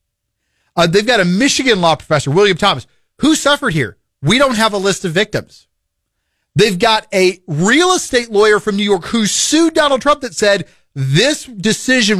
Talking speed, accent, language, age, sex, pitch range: 175 wpm, American, English, 40-59, male, 175-270 Hz